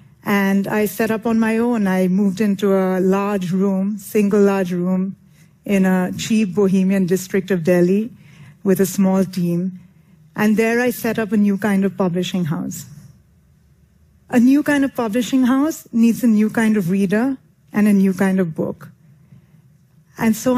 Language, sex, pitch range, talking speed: English, female, 185-230 Hz, 170 wpm